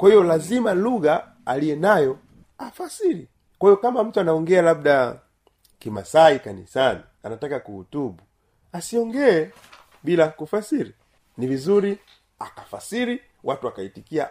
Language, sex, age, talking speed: Swahili, male, 40-59, 100 wpm